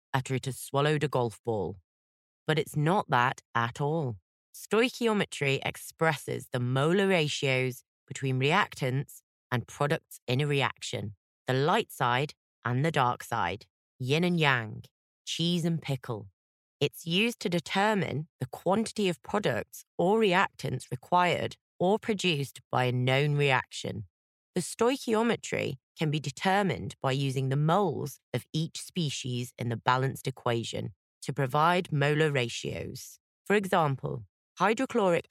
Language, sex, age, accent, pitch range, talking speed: English, female, 30-49, British, 130-170 Hz, 130 wpm